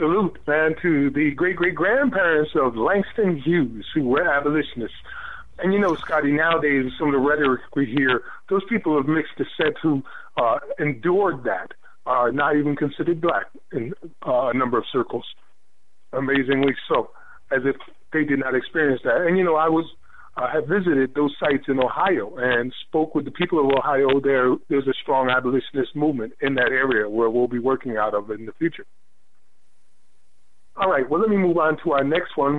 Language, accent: English, American